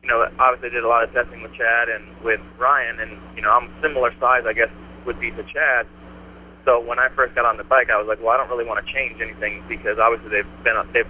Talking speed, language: 270 wpm, English